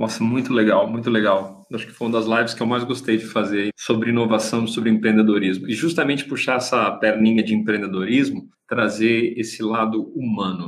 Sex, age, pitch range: male, 40-59, 115-135 Hz